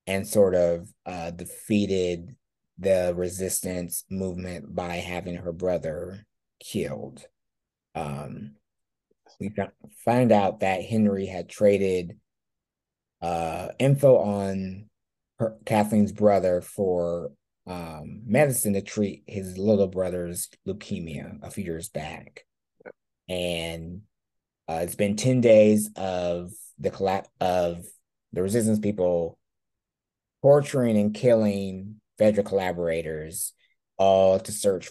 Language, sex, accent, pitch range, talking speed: English, male, American, 90-105 Hz, 105 wpm